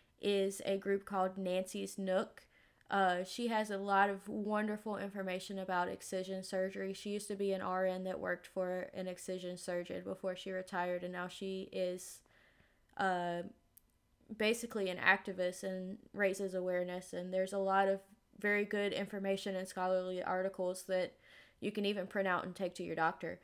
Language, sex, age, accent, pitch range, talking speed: English, female, 20-39, American, 185-205 Hz, 170 wpm